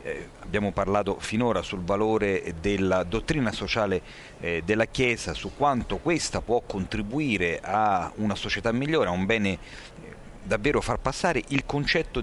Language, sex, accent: Italian, male, native